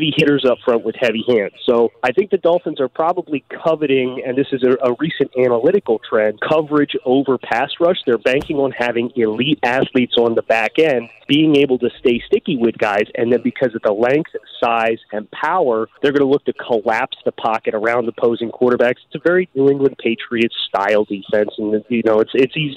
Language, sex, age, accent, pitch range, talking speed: English, male, 30-49, American, 115-140 Hz, 200 wpm